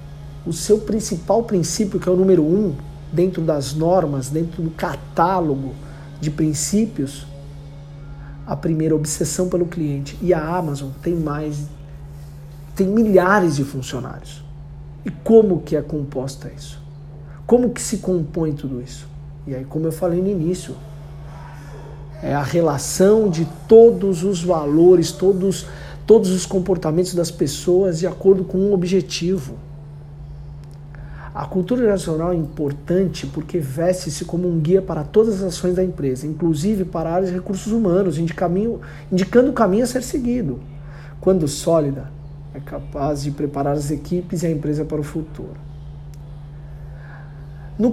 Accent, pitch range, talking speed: Brazilian, 145-180 Hz, 140 wpm